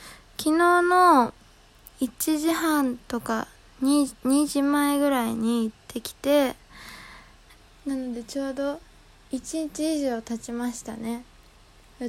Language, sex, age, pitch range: Japanese, female, 20-39, 230-285 Hz